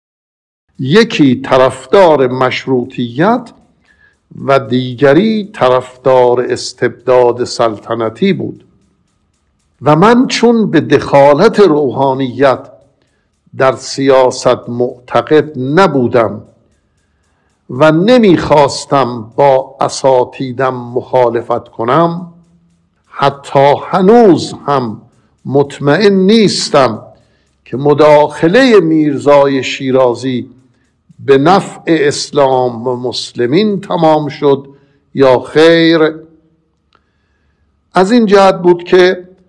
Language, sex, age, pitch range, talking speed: Persian, male, 60-79, 125-165 Hz, 75 wpm